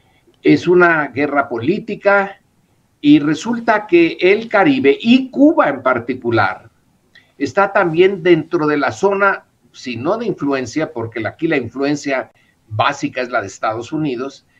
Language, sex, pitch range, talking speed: Spanish, male, 130-200 Hz, 135 wpm